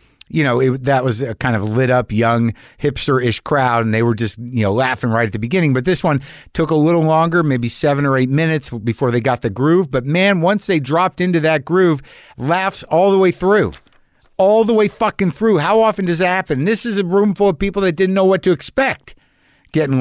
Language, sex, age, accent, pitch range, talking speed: English, male, 50-69, American, 115-160 Hz, 235 wpm